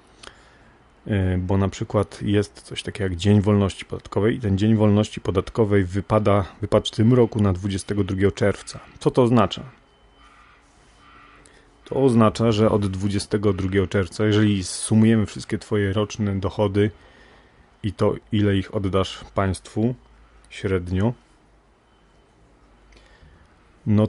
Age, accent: 30-49, native